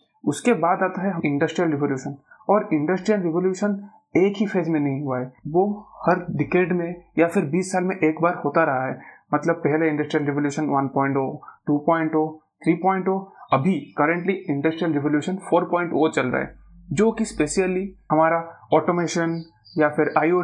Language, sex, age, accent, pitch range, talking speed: Hindi, male, 30-49, native, 150-185 Hz, 95 wpm